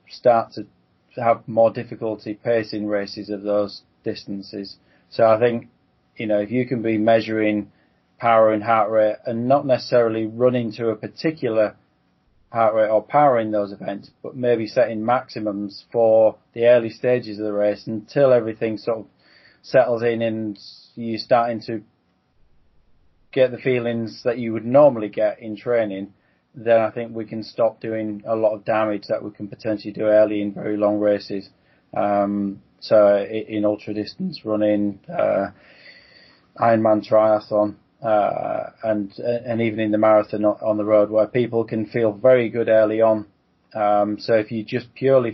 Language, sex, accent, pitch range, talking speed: English, male, British, 105-115 Hz, 165 wpm